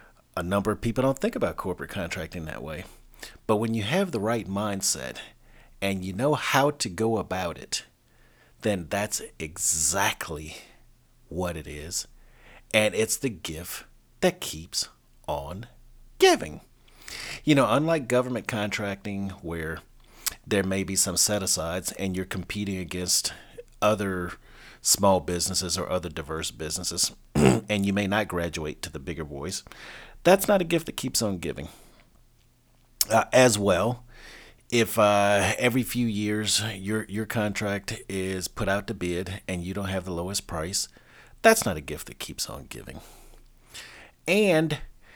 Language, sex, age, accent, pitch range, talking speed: English, male, 40-59, American, 90-120 Hz, 150 wpm